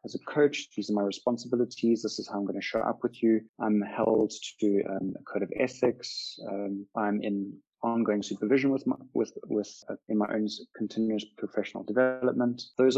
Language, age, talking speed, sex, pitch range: English, 20-39, 195 wpm, male, 105-120 Hz